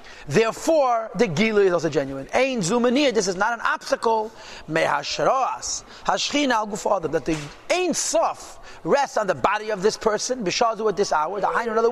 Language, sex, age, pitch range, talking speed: English, male, 40-59, 205-275 Hz, 190 wpm